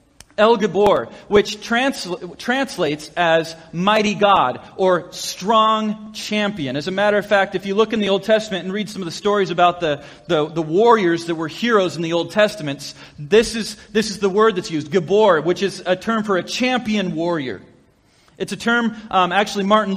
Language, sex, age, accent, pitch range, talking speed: English, male, 30-49, American, 180-220 Hz, 190 wpm